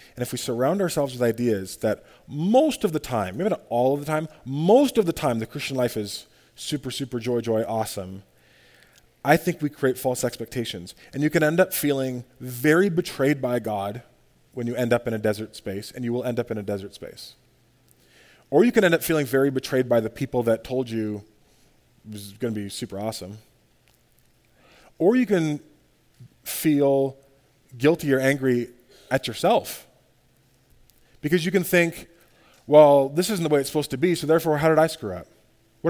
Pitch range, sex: 120-160 Hz, male